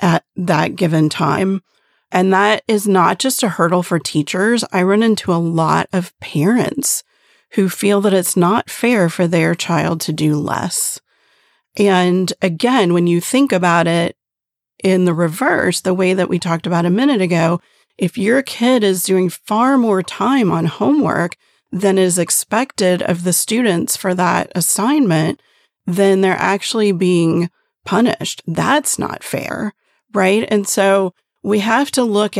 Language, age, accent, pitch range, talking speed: English, 40-59, American, 170-205 Hz, 155 wpm